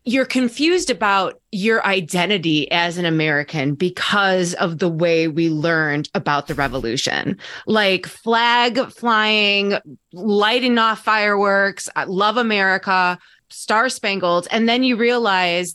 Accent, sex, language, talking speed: American, female, English, 120 wpm